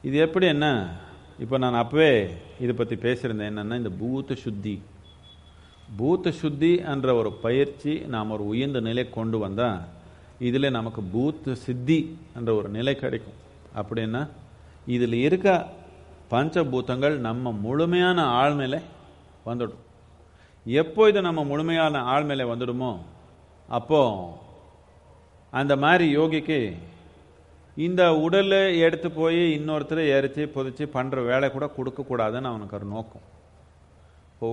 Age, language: 40-59, Tamil